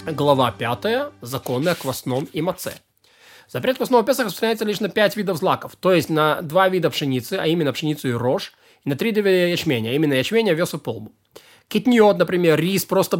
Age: 20-39